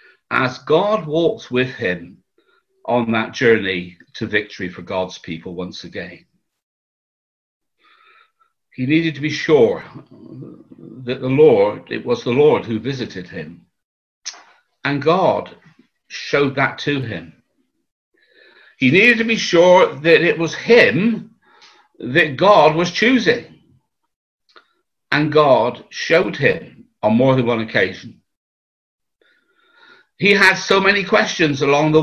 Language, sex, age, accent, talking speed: English, male, 60-79, British, 120 wpm